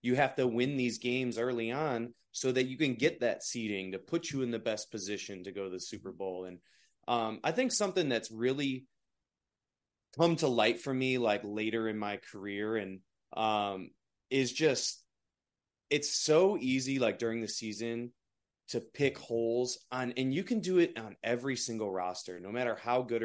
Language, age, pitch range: English, 20-39, 105-135 Hz